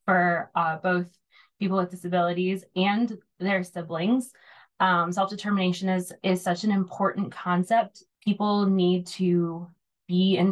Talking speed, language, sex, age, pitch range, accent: 125 wpm, English, female, 20-39, 175-200 Hz, American